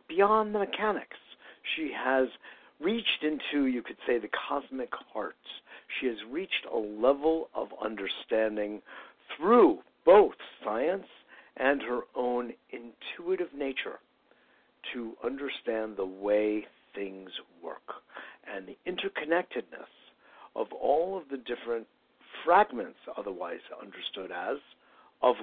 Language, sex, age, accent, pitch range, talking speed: English, male, 60-79, American, 105-160 Hz, 110 wpm